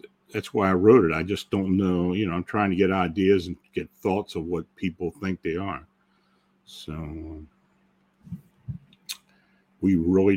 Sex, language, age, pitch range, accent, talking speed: male, English, 50-69, 85-100 Hz, American, 160 wpm